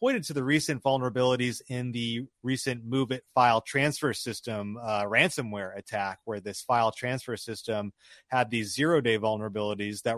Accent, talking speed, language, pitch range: American, 145 wpm, English, 110-135 Hz